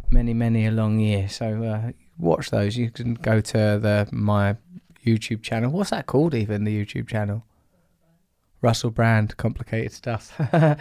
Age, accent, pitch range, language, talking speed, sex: 20-39, British, 110-135 Hz, English, 155 wpm, male